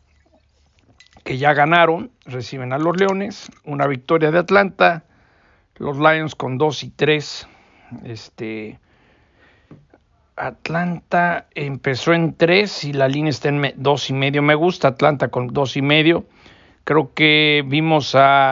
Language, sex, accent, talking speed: English, male, Mexican, 135 wpm